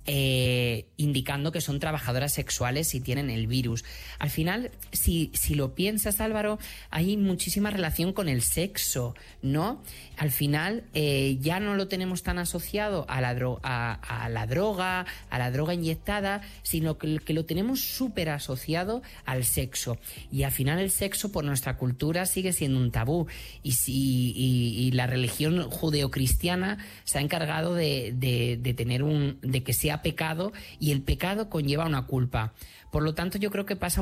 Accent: Spanish